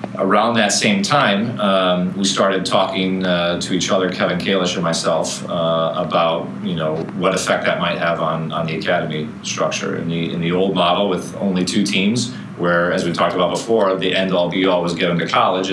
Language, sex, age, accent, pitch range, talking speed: English, male, 30-49, American, 85-95 Hz, 200 wpm